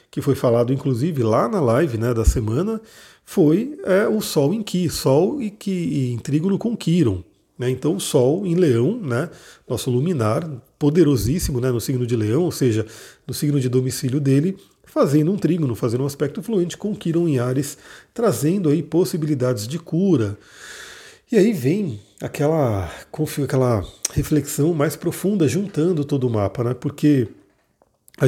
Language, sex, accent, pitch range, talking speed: Portuguese, male, Brazilian, 130-180 Hz, 160 wpm